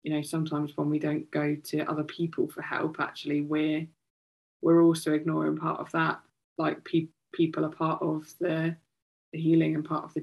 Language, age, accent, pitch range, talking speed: English, 20-39, British, 155-170 Hz, 195 wpm